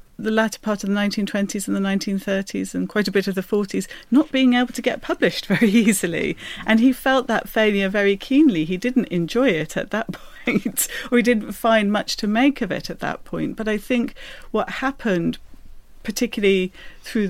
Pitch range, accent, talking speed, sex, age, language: 190-230 Hz, British, 200 wpm, female, 40-59, English